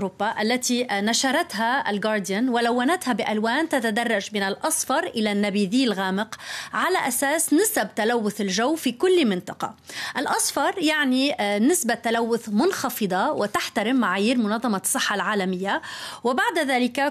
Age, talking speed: 30-49, 110 wpm